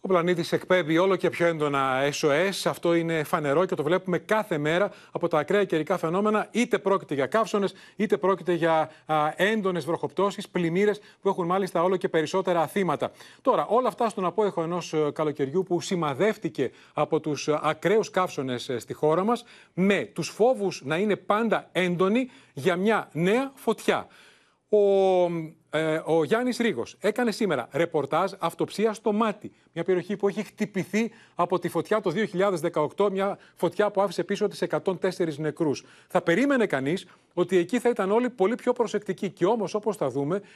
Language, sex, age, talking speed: Greek, male, 40-59, 165 wpm